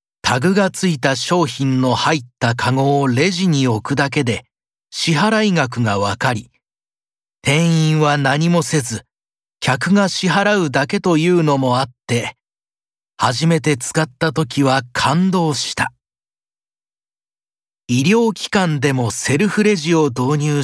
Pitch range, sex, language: 125-170 Hz, male, Japanese